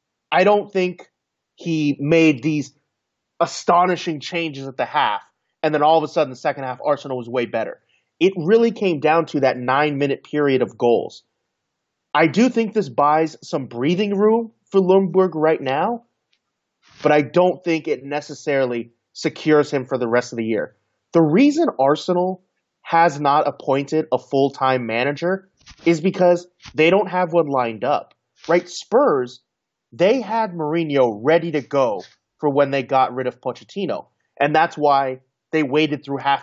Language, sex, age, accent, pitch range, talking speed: English, male, 30-49, American, 130-170 Hz, 165 wpm